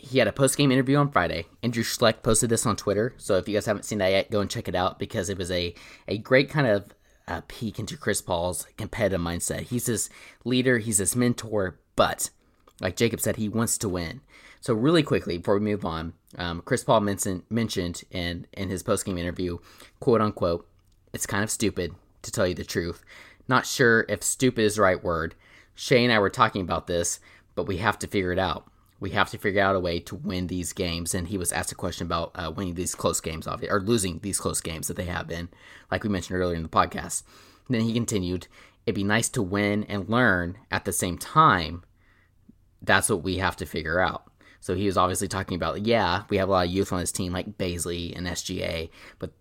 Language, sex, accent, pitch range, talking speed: English, male, American, 90-105 Hz, 225 wpm